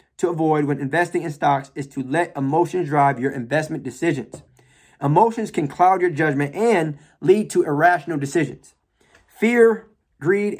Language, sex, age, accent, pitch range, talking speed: English, male, 20-39, American, 145-190 Hz, 140 wpm